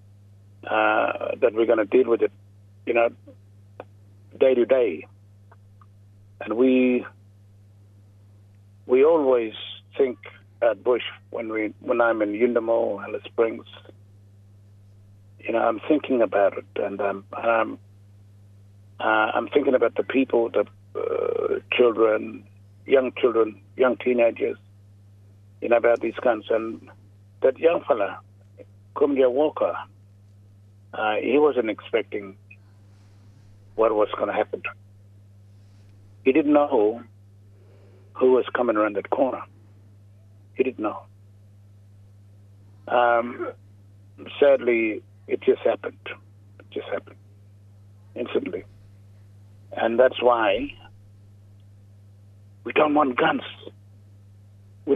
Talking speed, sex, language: 110 wpm, male, English